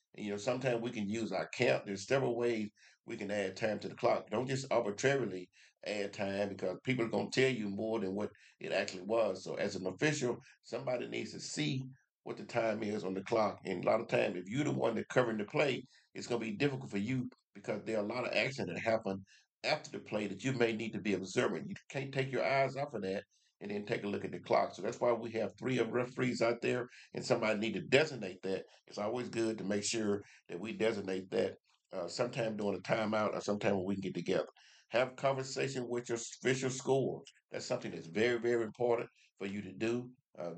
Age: 50-69